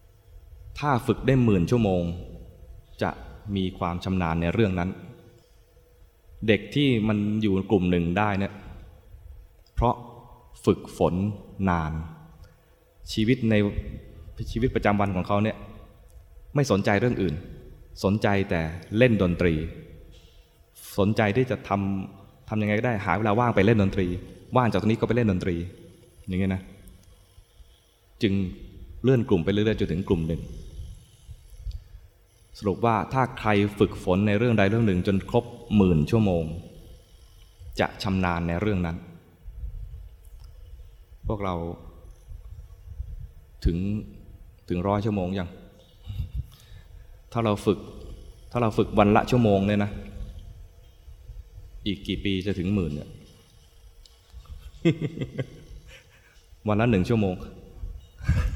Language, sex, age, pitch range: English, male, 20-39, 85-105 Hz